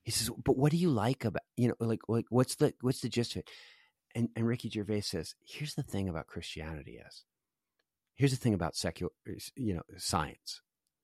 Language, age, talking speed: English, 40-59, 205 wpm